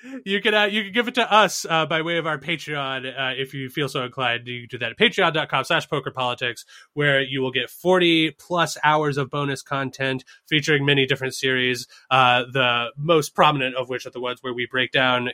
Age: 20-39